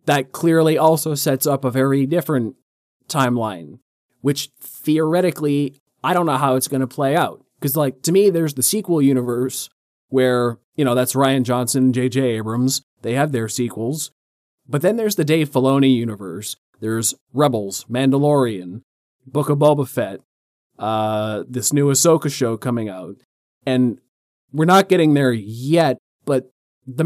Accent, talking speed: American, 155 wpm